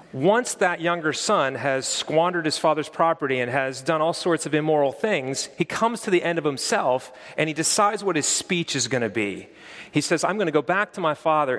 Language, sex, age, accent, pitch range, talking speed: English, male, 30-49, American, 145-190 Hz, 230 wpm